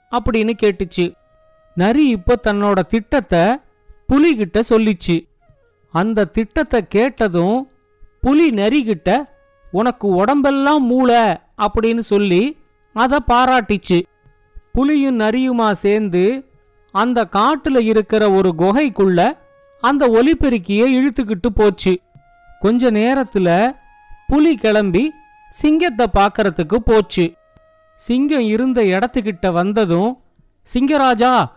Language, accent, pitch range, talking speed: Tamil, native, 200-270 Hz, 85 wpm